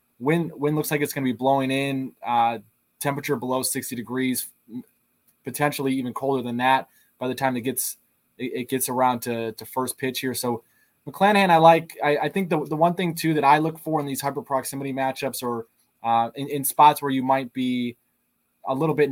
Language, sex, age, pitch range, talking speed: English, male, 20-39, 125-145 Hz, 210 wpm